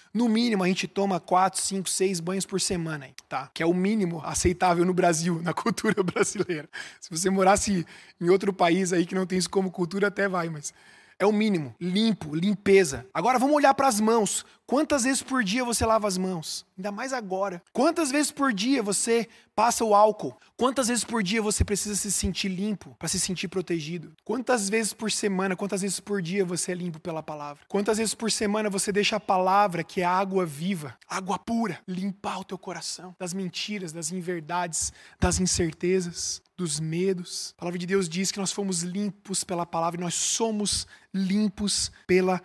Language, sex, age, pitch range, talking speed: Portuguese, male, 20-39, 180-230 Hz, 190 wpm